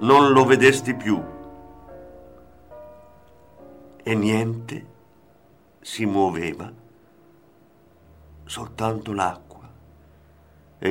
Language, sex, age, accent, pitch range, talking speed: Italian, male, 50-69, native, 95-125 Hz, 60 wpm